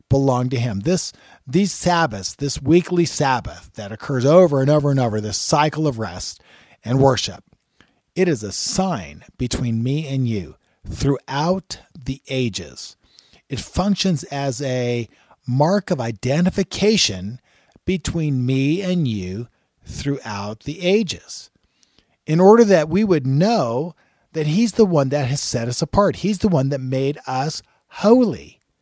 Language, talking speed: English, 145 wpm